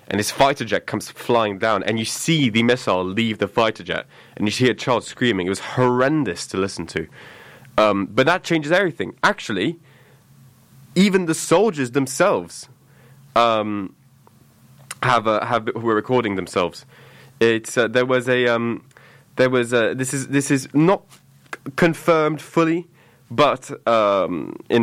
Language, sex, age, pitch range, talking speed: English, male, 20-39, 95-125 Hz, 160 wpm